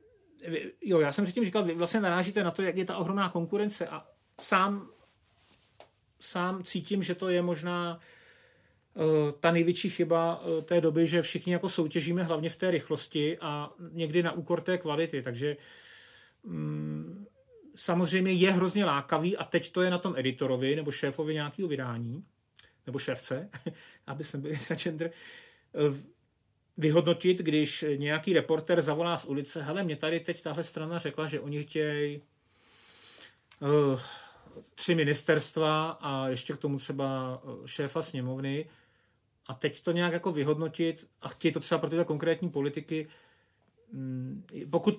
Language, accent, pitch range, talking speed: Czech, native, 145-175 Hz, 145 wpm